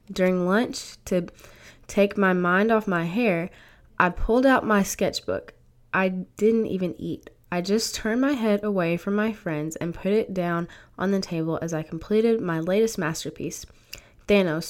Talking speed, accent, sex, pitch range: 165 wpm, American, female, 165-210 Hz